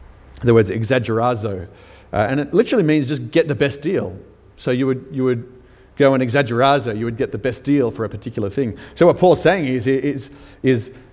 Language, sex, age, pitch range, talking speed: English, male, 30-49, 100-130 Hz, 205 wpm